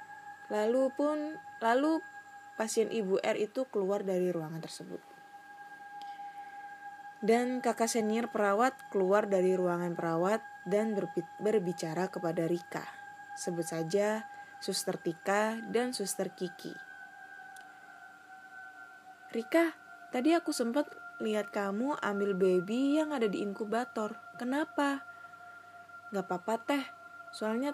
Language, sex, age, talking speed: Indonesian, female, 20-39, 100 wpm